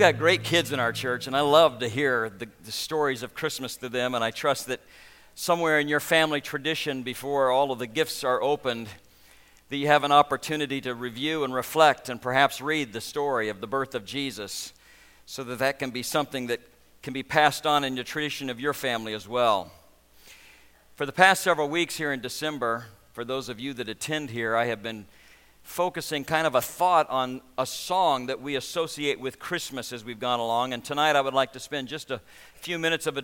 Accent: American